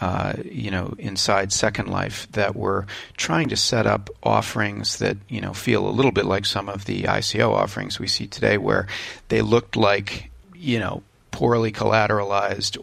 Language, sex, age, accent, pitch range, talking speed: English, male, 40-59, American, 100-115 Hz, 175 wpm